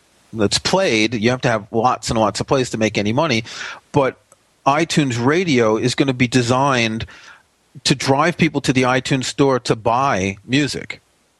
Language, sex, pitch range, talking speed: English, male, 115-155 Hz, 175 wpm